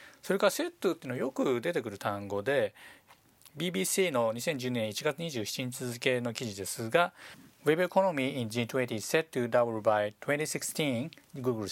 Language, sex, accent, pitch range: Japanese, male, native, 115-160 Hz